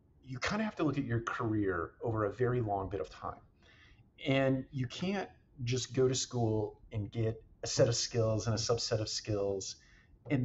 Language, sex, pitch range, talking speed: English, male, 105-125 Hz, 200 wpm